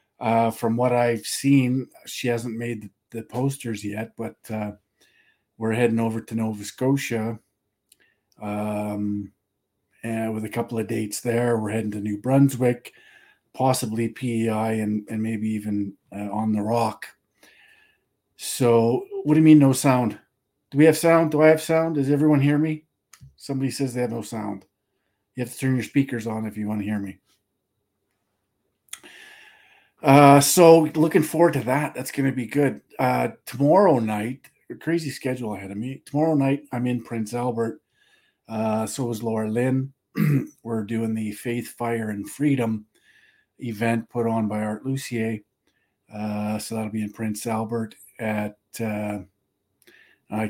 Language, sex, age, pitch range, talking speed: English, male, 40-59, 105-130 Hz, 155 wpm